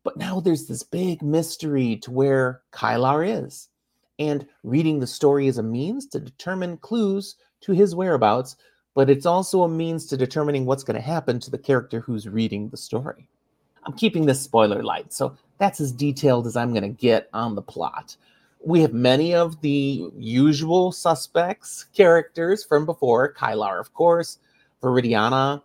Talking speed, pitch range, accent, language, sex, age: 170 wpm, 125-180 Hz, American, English, male, 30-49